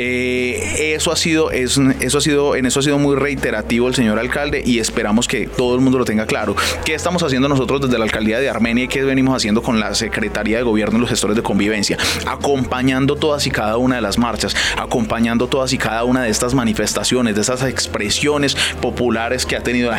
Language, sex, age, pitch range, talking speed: Spanish, male, 30-49, 115-140 Hz, 215 wpm